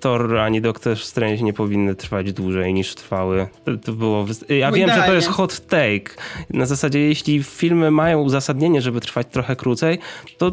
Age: 20-39